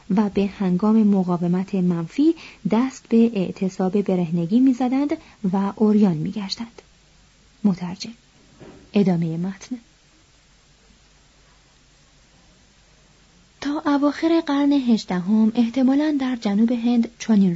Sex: female